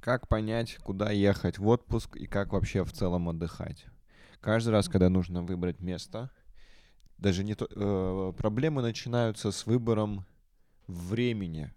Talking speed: 135 wpm